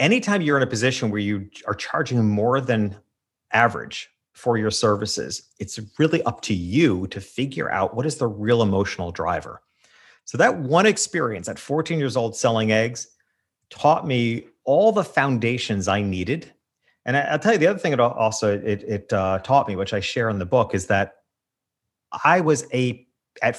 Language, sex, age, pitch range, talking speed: English, male, 40-59, 110-160 Hz, 185 wpm